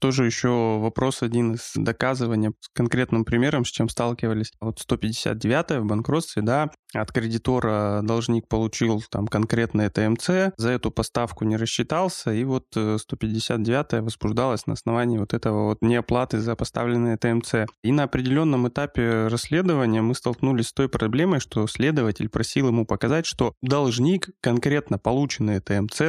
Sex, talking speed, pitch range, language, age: male, 145 wpm, 110-130 Hz, Russian, 20-39